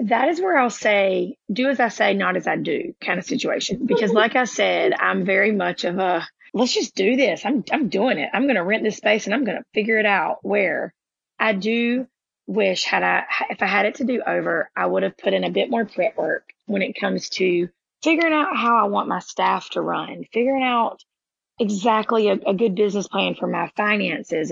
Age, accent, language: 30-49, American, English